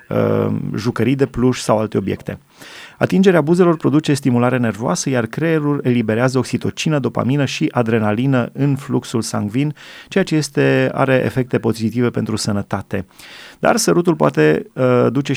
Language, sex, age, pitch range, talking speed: Romanian, male, 30-49, 115-140 Hz, 135 wpm